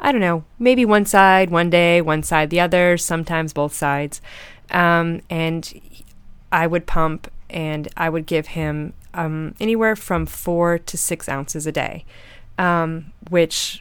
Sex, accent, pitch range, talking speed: female, American, 155-175 Hz, 155 wpm